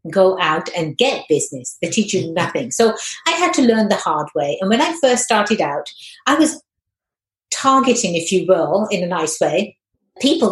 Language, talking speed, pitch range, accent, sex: English, 195 wpm, 175-245 Hz, British, female